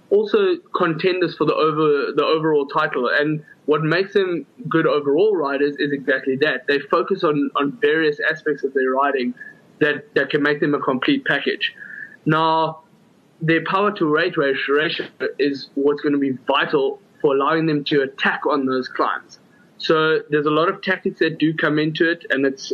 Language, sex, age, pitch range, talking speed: English, male, 20-39, 145-200 Hz, 180 wpm